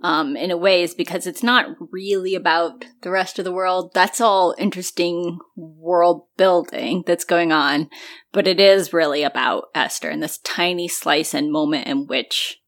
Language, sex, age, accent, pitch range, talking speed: English, female, 20-39, American, 180-260 Hz, 175 wpm